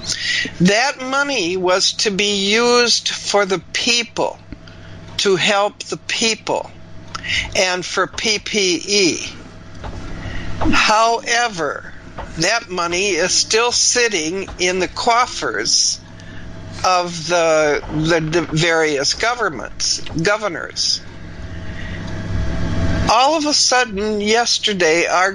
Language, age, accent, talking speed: English, 60-79, American, 90 wpm